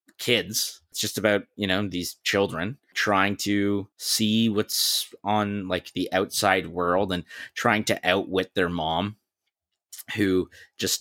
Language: English